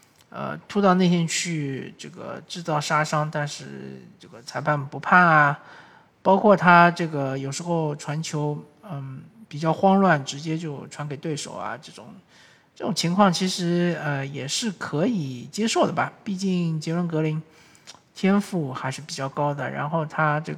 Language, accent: Chinese, native